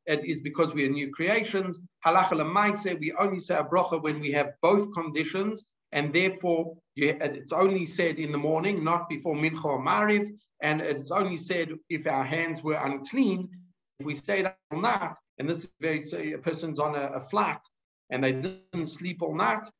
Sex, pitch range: male, 155-200 Hz